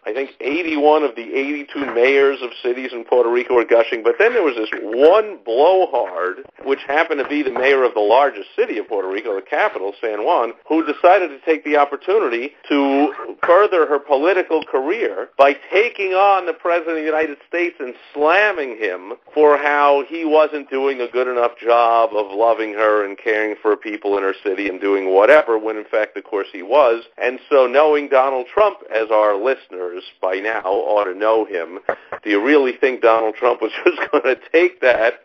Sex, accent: male, American